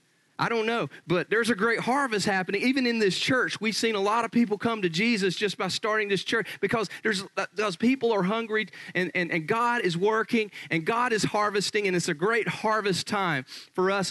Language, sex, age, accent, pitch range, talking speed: English, male, 40-59, American, 140-195 Hz, 215 wpm